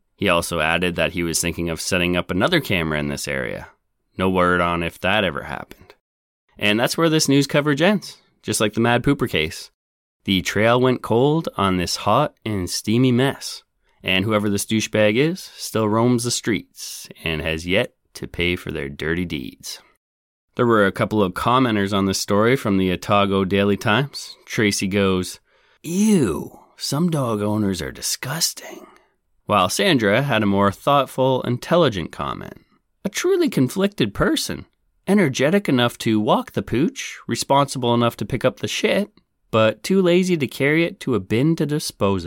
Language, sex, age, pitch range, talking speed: English, male, 30-49, 95-135 Hz, 170 wpm